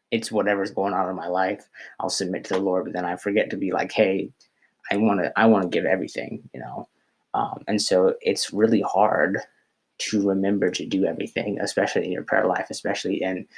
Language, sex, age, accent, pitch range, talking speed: English, male, 20-39, American, 95-110 Hz, 210 wpm